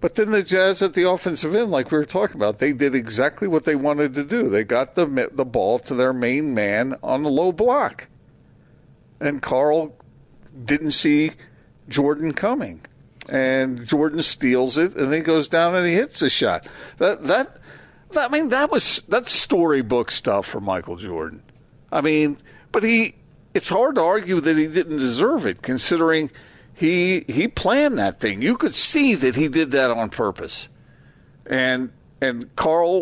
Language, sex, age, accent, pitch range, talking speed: English, male, 50-69, American, 135-185 Hz, 175 wpm